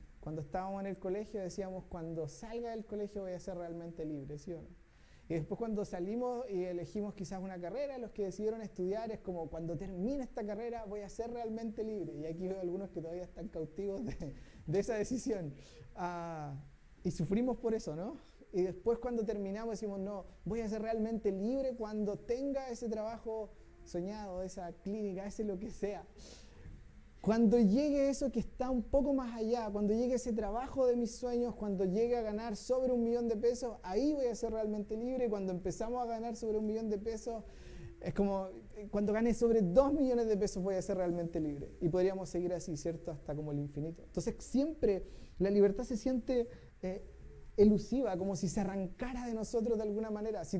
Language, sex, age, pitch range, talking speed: Spanish, male, 30-49, 185-230 Hz, 190 wpm